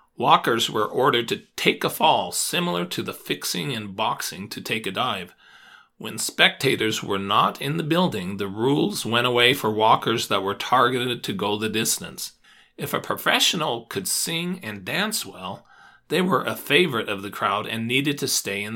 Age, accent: 40-59, American